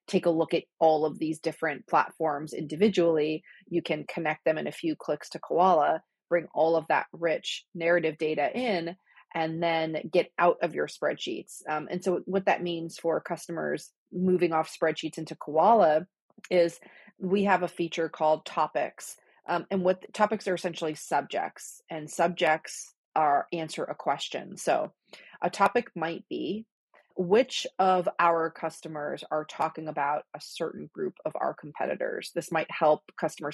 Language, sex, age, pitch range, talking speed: English, female, 30-49, 155-185 Hz, 165 wpm